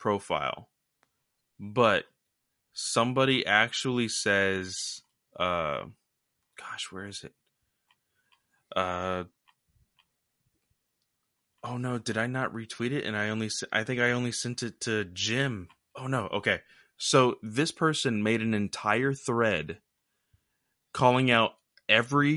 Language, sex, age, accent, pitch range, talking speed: English, male, 20-39, American, 100-120 Hz, 115 wpm